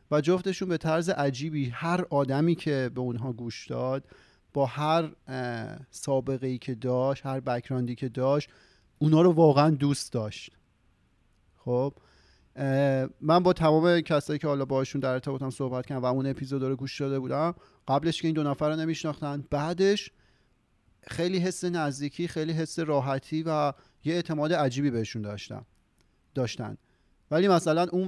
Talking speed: 150 wpm